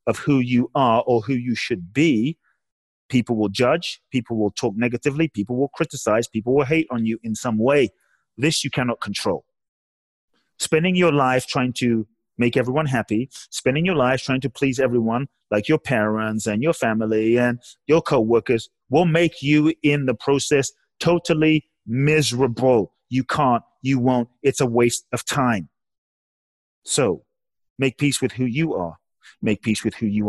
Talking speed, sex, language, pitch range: 165 wpm, male, English, 110-145 Hz